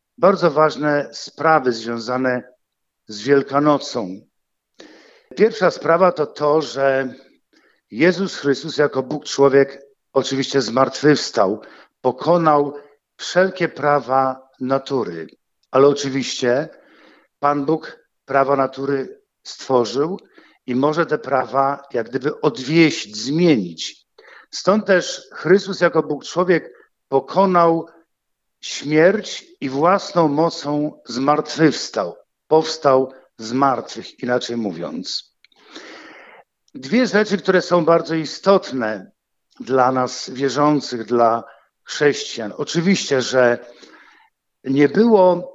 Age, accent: 50-69, native